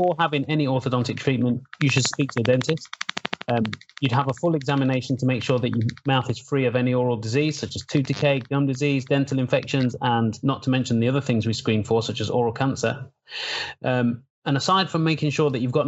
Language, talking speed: English, 225 wpm